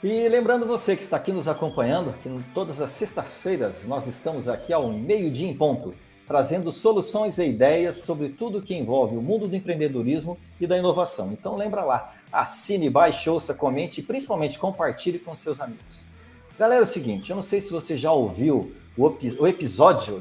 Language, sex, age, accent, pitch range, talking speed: Portuguese, male, 60-79, Brazilian, 145-205 Hz, 180 wpm